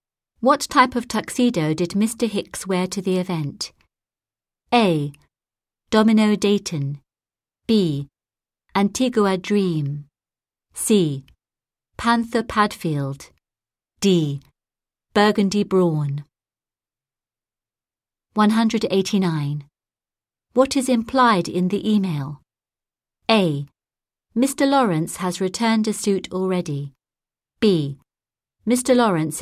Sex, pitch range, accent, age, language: female, 140-215 Hz, British, 40-59, Japanese